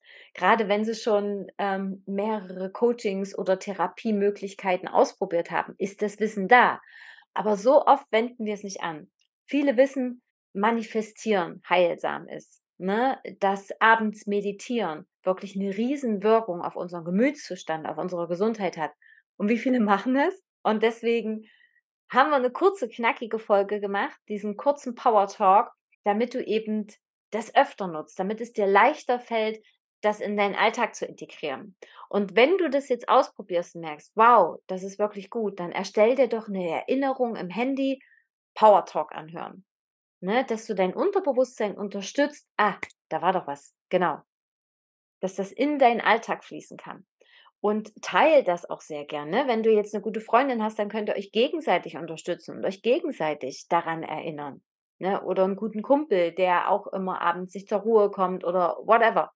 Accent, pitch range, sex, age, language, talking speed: German, 185-240 Hz, female, 30-49, German, 160 wpm